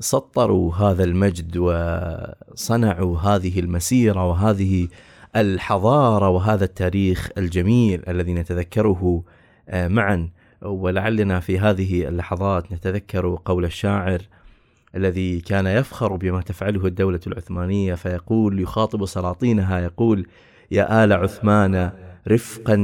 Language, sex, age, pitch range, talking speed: Arabic, male, 30-49, 90-110 Hz, 95 wpm